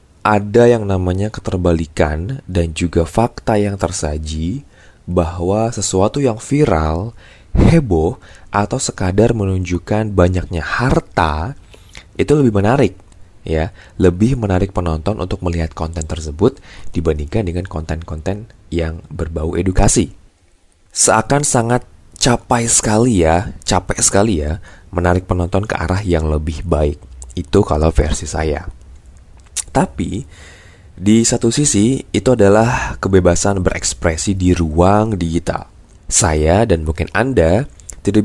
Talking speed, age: 110 wpm, 20-39